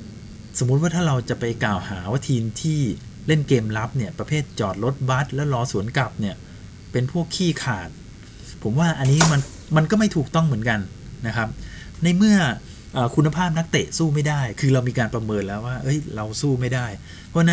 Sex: male